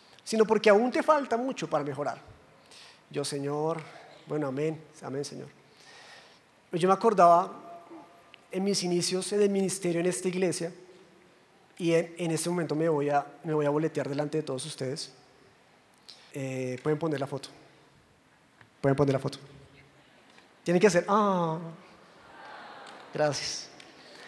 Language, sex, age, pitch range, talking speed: Spanish, male, 30-49, 155-200 Hz, 140 wpm